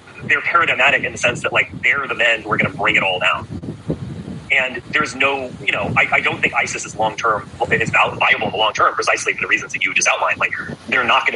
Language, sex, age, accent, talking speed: English, male, 30-49, American, 260 wpm